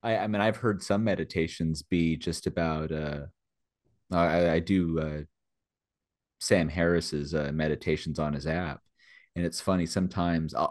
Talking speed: 150 wpm